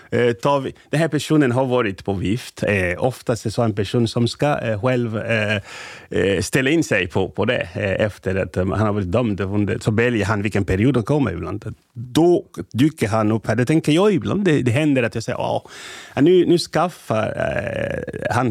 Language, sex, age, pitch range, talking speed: Swedish, male, 30-49, 100-125 Hz, 180 wpm